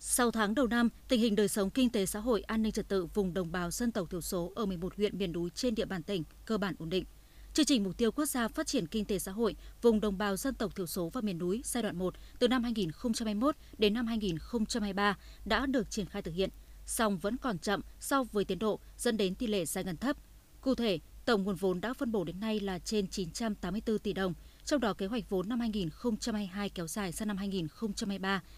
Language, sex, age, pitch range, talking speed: Vietnamese, female, 20-39, 190-235 Hz, 270 wpm